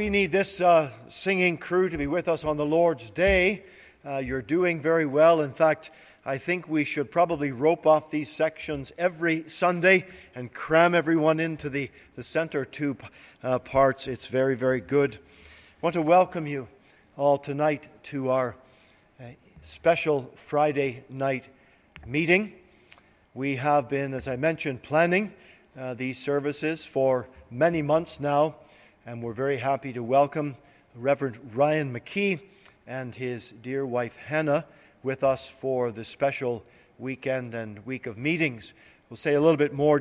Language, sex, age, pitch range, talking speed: English, male, 50-69, 130-165 Hz, 155 wpm